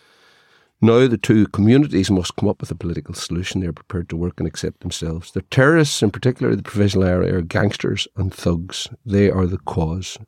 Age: 50-69